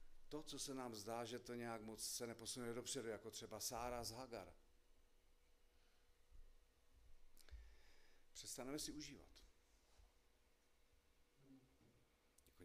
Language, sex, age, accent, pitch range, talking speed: Czech, male, 50-69, native, 80-115 Hz, 100 wpm